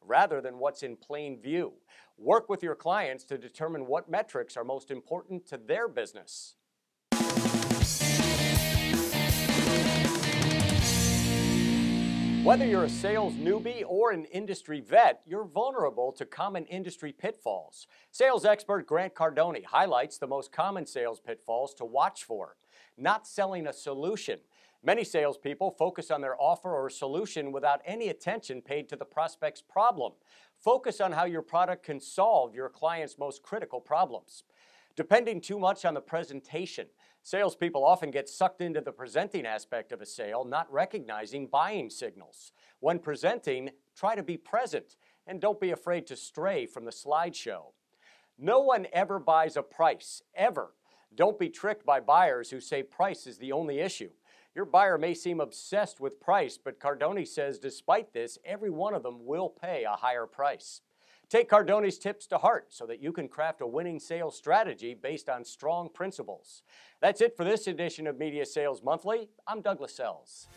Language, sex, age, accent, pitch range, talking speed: English, male, 50-69, American, 135-200 Hz, 160 wpm